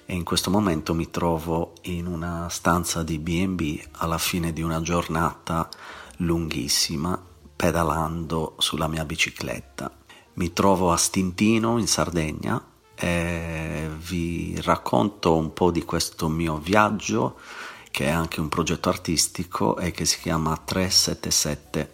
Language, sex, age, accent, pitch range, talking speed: Italian, male, 40-59, native, 80-90 Hz, 130 wpm